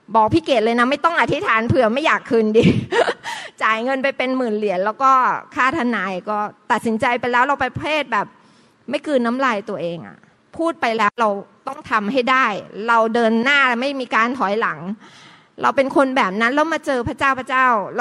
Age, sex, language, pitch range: 20-39, female, Thai, 210-270 Hz